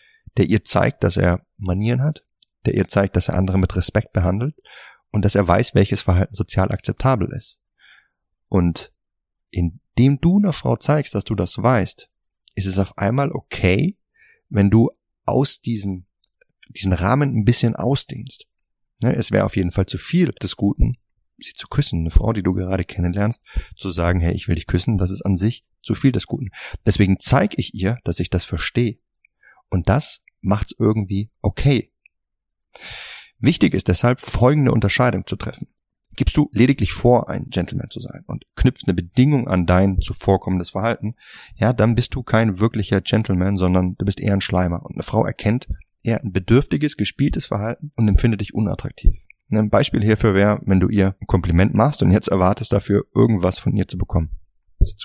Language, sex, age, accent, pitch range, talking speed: German, male, 30-49, German, 95-120 Hz, 180 wpm